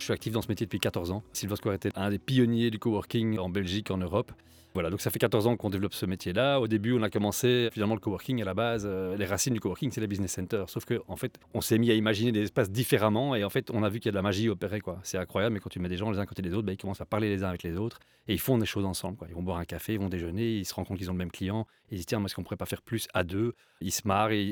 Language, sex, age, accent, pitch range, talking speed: French, male, 30-49, French, 100-125 Hz, 345 wpm